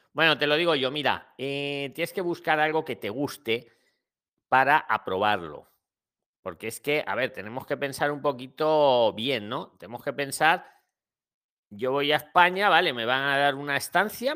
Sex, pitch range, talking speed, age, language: male, 120-175 Hz, 175 wpm, 40-59, Spanish